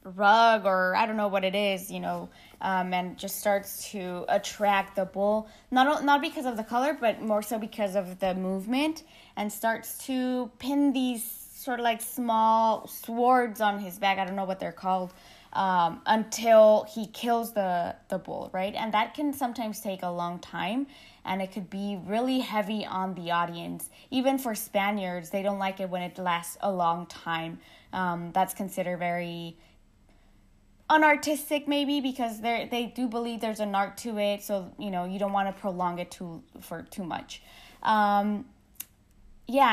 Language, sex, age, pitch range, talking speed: English, female, 20-39, 185-230 Hz, 180 wpm